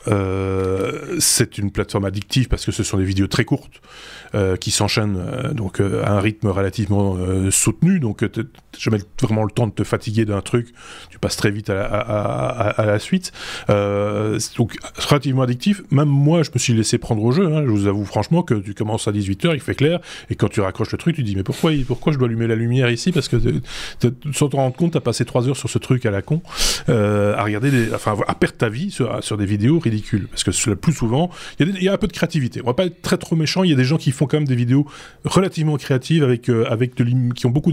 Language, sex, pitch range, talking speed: French, male, 105-140 Hz, 270 wpm